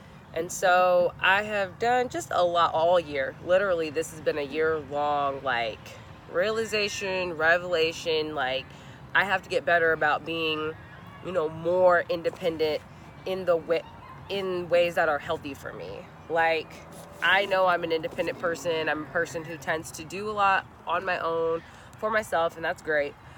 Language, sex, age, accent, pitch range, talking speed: English, female, 20-39, American, 150-180 Hz, 170 wpm